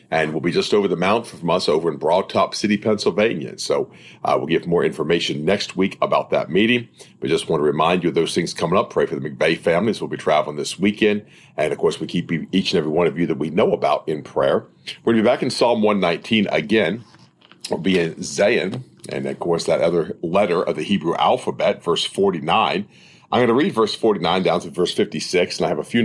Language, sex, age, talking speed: English, male, 50-69, 250 wpm